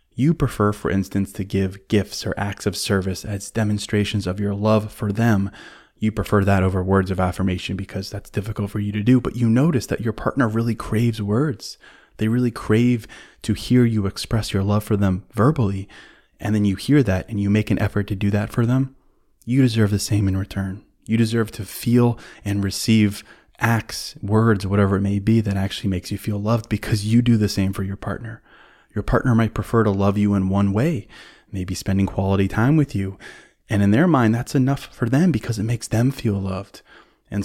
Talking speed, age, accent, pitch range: 210 wpm, 20-39, American, 100-115 Hz